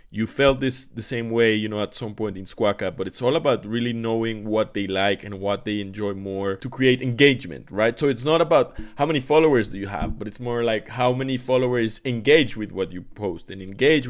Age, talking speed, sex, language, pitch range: 20-39, 235 wpm, male, English, 105-135 Hz